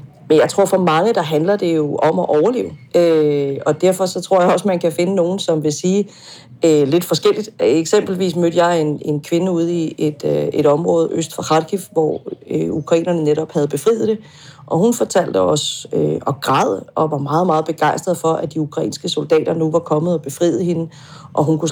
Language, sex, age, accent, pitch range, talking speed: Danish, female, 40-59, native, 155-185 Hz, 215 wpm